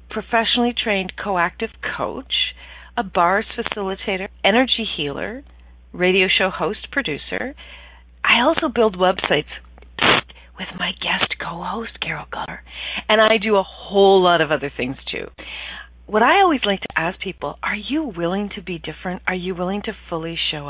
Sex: female